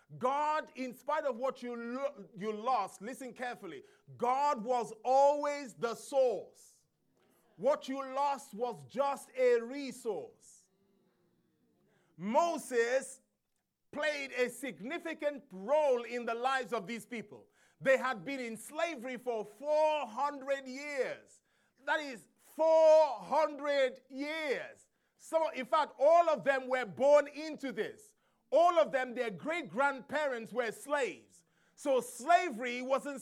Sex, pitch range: male, 245-295 Hz